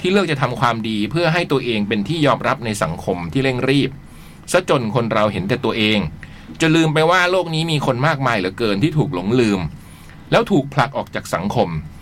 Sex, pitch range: male, 115-160 Hz